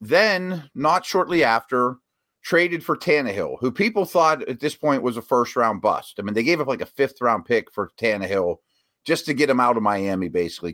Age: 40-59